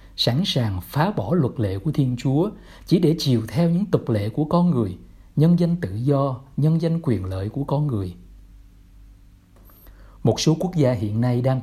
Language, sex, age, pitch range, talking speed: Vietnamese, male, 60-79, 110-170 Hz, 190 wpm